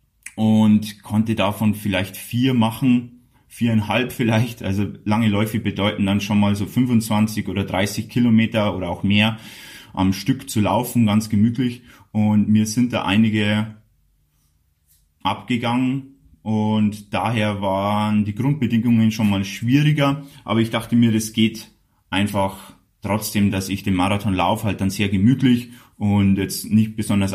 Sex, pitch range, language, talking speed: male, 100-120 Hz, German, 140 wpm